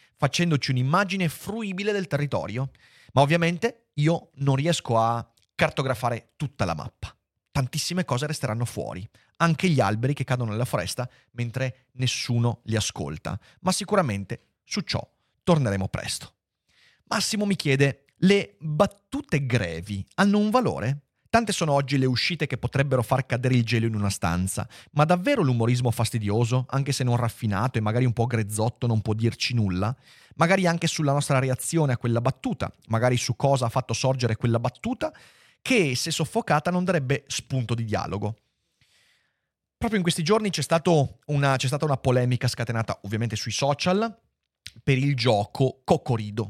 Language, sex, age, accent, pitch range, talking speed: Italian, male, 30-49, native, 115-150 Hz, 155 wpm